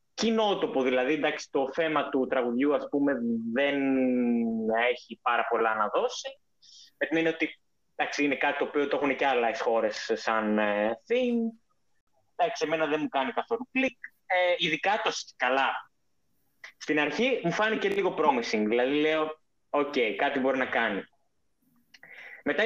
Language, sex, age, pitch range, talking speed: Greek, male, 20-39, 135-210 Hz, 145 wpm